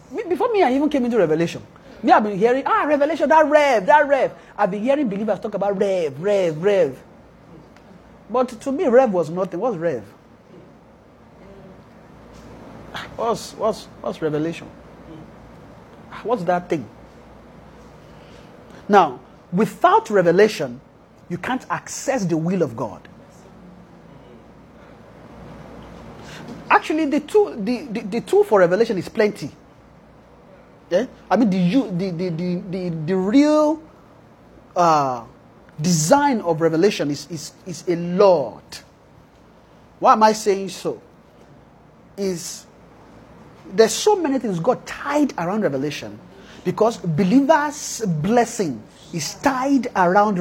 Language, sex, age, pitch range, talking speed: English, male, 30-49, 175-265 Hz, 120 wpm